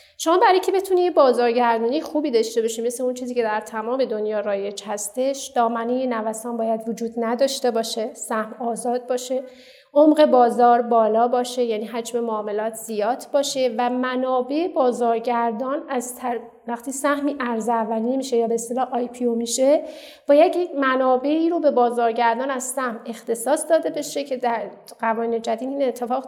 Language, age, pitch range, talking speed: Persian, 30-49, 230-285 Hz, 155 wpm